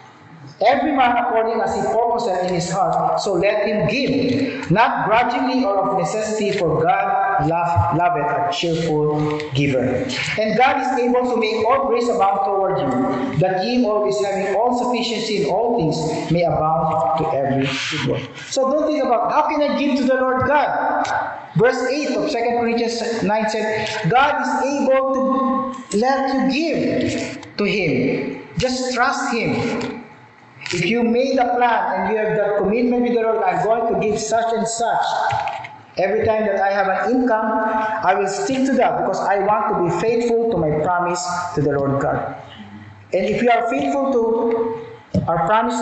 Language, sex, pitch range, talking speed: English, male, 175-245 Hz, 180 wpm